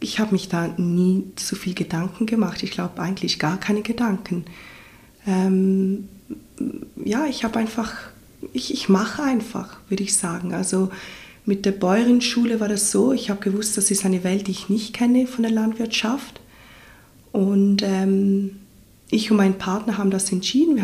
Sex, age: female, 20-39